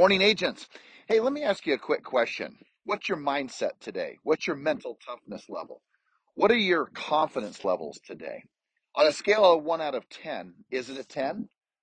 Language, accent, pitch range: English, American, 135-210 Hz